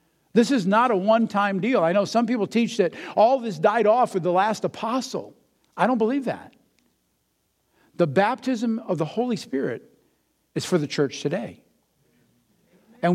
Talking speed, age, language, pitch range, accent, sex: 165 wpm, 50-69, English, 170-230 Hz, American, male